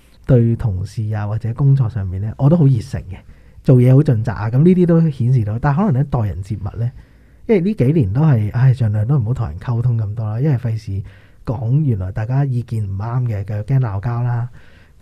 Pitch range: 105-140 Hz